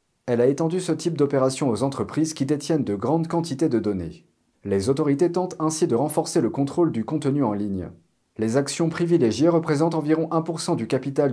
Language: French